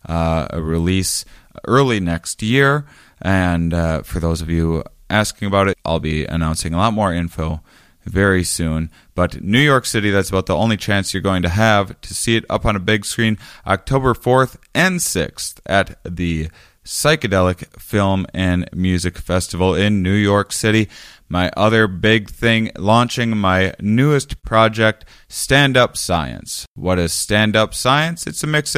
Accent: American